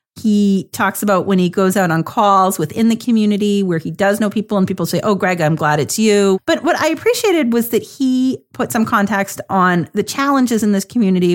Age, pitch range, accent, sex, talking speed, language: 40-59, 175-220 Hz, American, female, 220 wpm, English